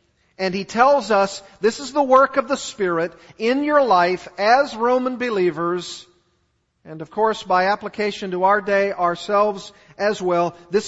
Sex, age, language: male, 40-59, English